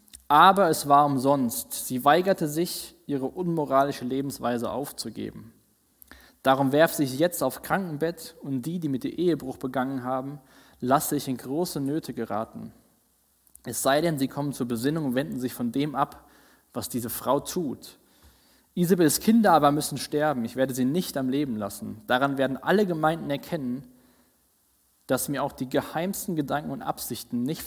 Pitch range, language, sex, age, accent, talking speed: 125-155 Hz, German, male, 20-39, German, 160 wpm